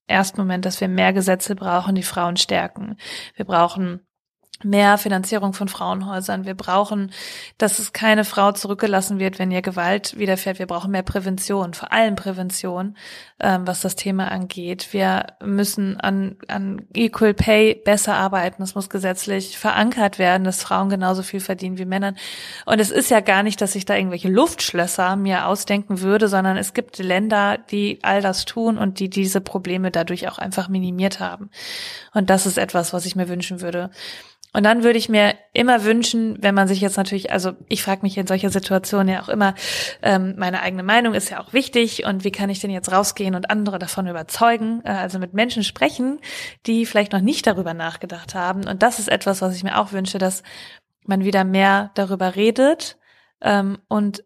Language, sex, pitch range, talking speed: German, female, 190-210 Hz, 185 wpm